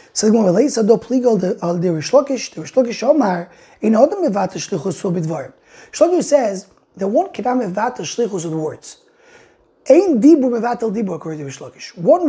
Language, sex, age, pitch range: English, male, 20-39, 200-280 Hz